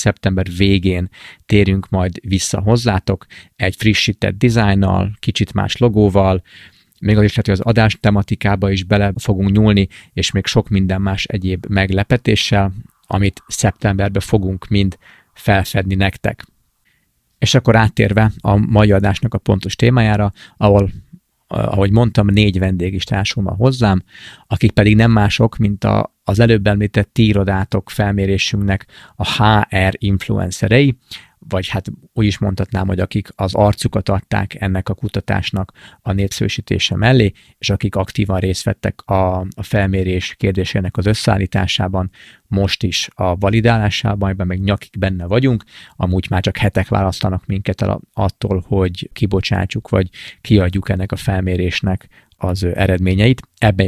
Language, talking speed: Hungarian, 135 wpm